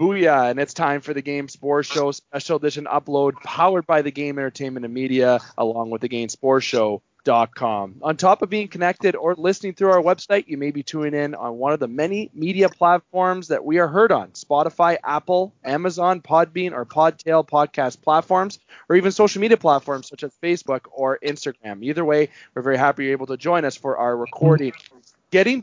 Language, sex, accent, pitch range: English, male, American, 135-180 Hz